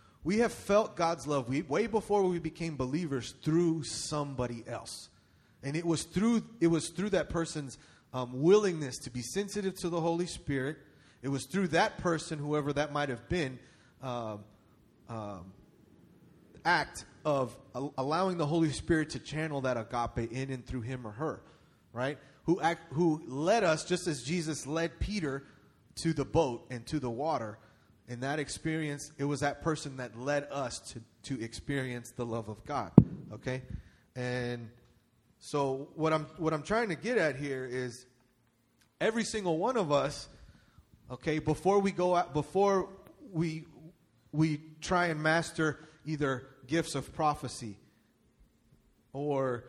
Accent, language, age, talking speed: American, English, 30-49, 155 wpm